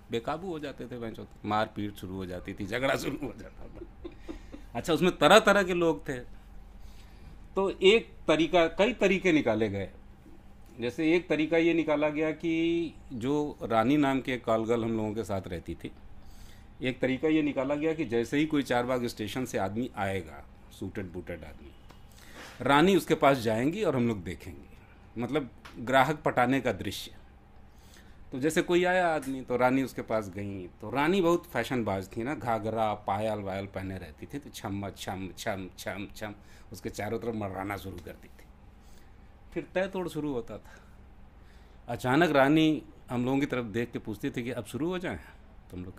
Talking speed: 180 wpm